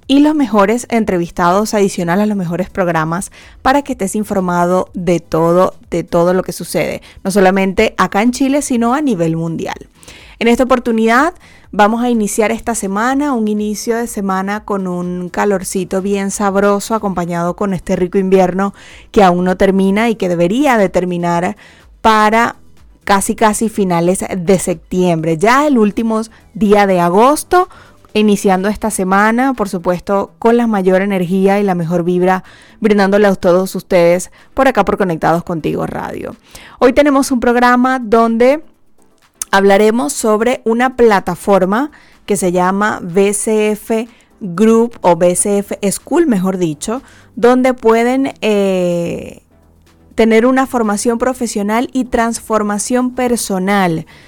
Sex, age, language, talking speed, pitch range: female, 30-49, Spanish, 135 wpm, 185-230 Hz